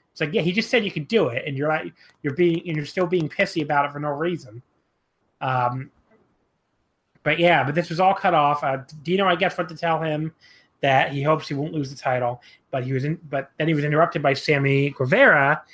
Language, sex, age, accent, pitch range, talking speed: English, male, 30-49, American, 135-175 Hz, 235 wpm